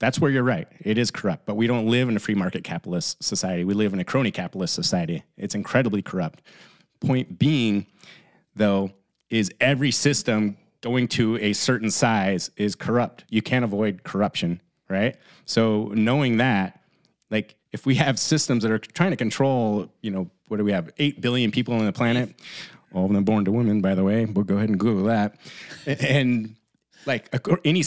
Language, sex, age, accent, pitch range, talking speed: English, male, 30-49, American, 100-130 Hz, 190 wpm